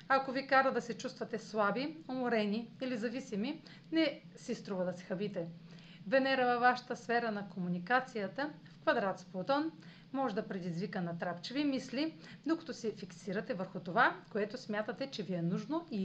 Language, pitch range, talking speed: Bulgarian, 185-260 Hz, 165 wpm